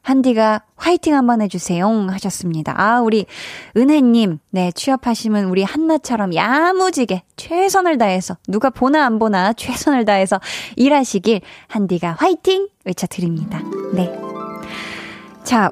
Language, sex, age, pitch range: Korean, female, 20-39, 195-285 Hz